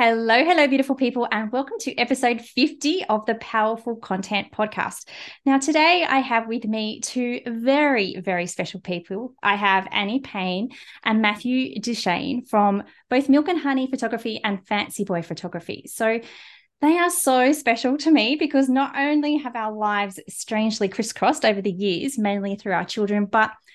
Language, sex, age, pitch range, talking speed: English, female, 20-39, 195-260 Hz, 165 wpm